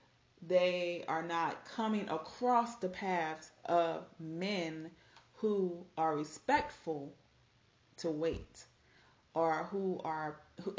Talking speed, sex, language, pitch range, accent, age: 100 wpm, female, English, 155-190 Hz, American, 30-49